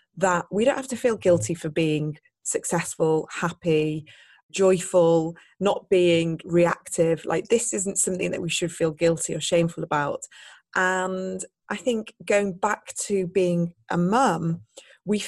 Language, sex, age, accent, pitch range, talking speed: English, female, 20-39, British, 165-195 Hz, 145 wpm